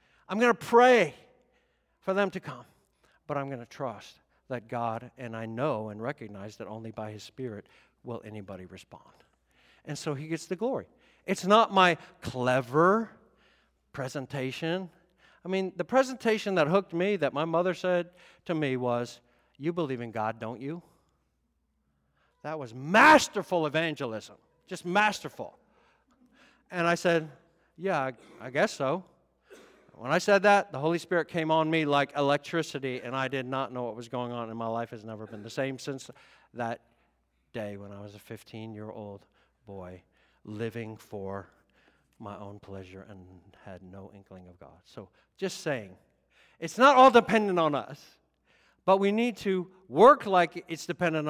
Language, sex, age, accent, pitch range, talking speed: English, male, 50-69, American, 110-175 Hz, 165 wpm